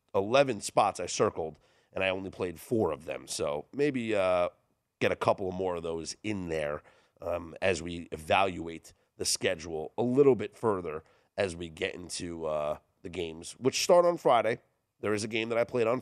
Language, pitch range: English, 90-130 Hz